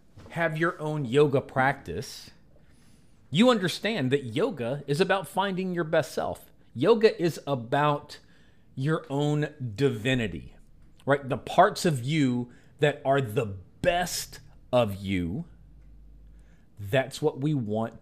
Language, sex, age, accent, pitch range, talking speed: English, male, 40-59, American, 115-155 Hz, 120 wpm